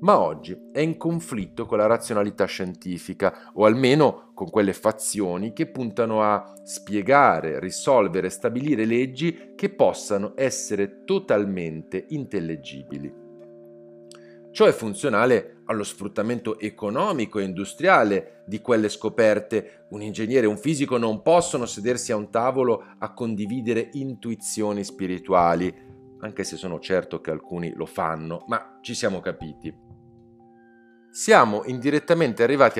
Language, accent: Italian, native